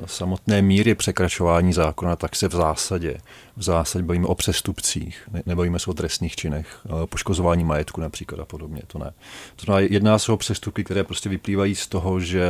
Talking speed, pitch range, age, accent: 170 wpm, 85-95 Hz, 40-59, native